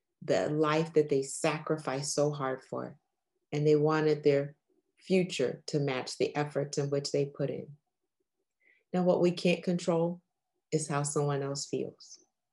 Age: 30-49